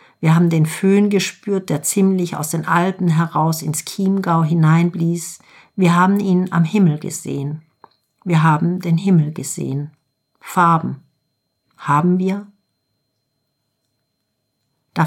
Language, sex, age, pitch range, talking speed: German, female, 50-69, 150-185 Hz, 115 wpm